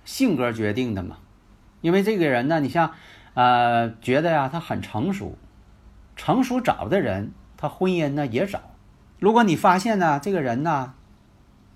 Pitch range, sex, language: 105-170 Hz, male, Chinese